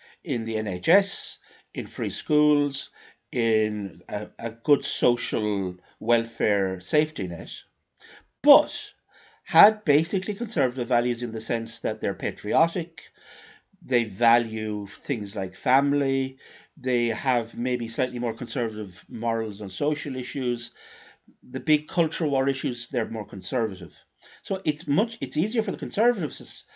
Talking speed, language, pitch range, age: 125 wpm, English, 110-150 Hz, 60-79